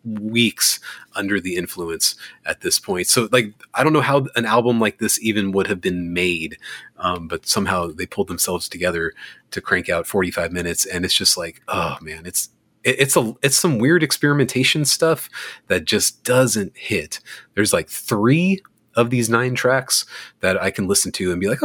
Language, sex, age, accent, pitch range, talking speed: English, male, 30-49, American, 85-120 Hz, 185 wpm